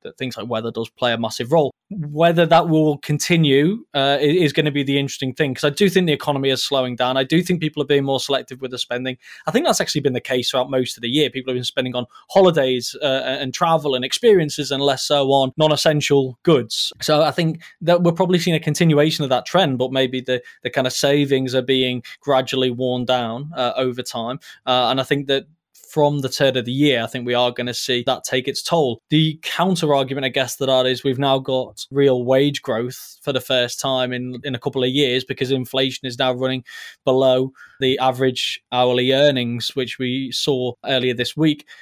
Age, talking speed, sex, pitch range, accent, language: 20-39, 225 wpm, male, 125-145 Hz, British, English